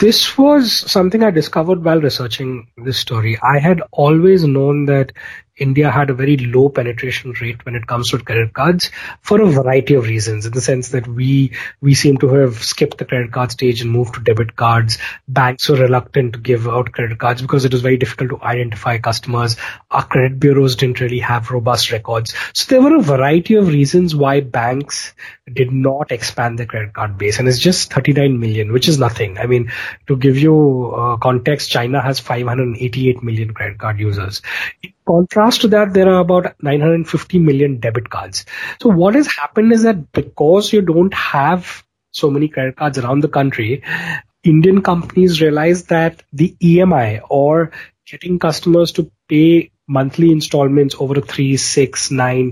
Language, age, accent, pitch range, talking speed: English, 30-49, Indian, 125-165 Hz, 180 wpm